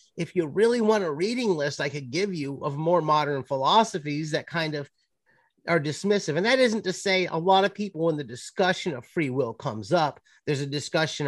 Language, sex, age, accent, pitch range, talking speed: English, male, 30-49, American, 120-175 Hz, 215 wpm